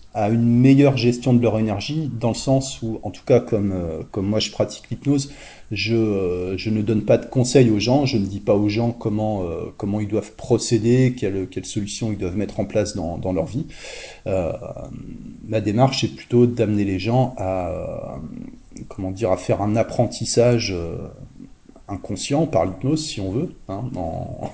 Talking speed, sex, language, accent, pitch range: 180 wpm, male, French, French, 100-120 Hz